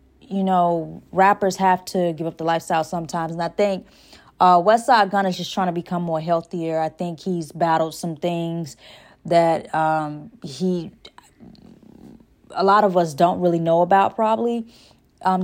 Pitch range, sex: 170-200 Hz, female